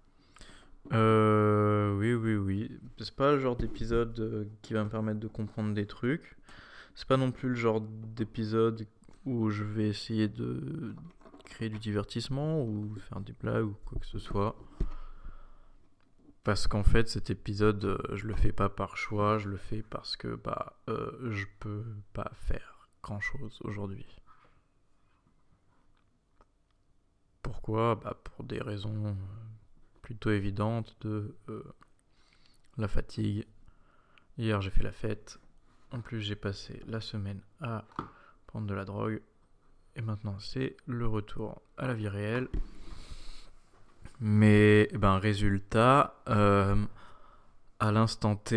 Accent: French